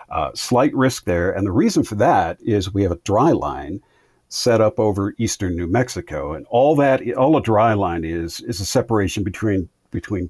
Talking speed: 200 wpm